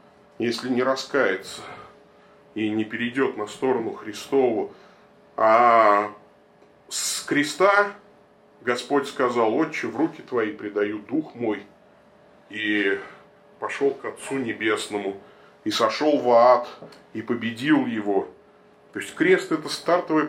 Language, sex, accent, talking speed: Russian, male, native, 110 wpm